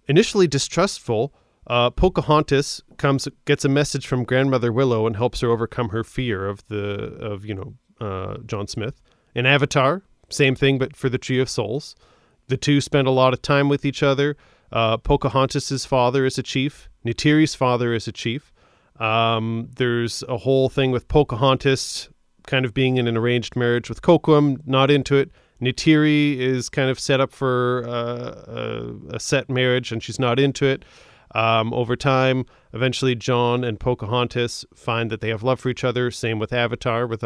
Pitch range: 120-135 Hz